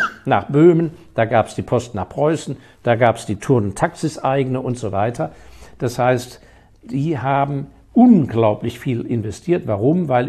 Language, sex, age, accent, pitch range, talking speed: German, male, 60-79, German, 115-155 Hz, 165 wpm